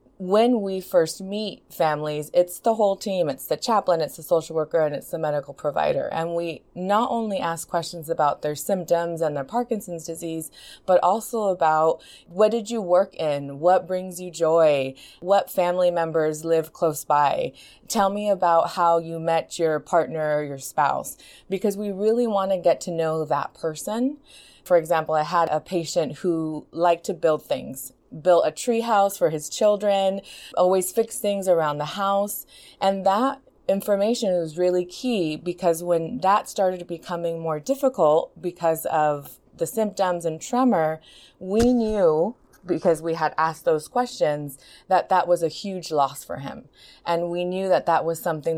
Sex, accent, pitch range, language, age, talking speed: female, American, 155-190 Hz, English, 20-39, 170 wpm